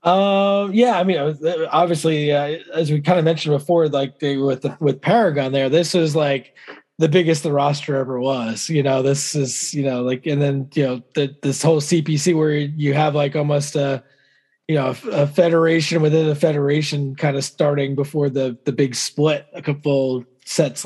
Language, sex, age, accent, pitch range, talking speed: English, male, 20-39, American, 140-160 Hz, 195 wpm